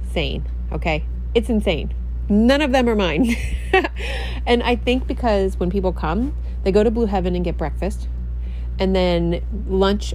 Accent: American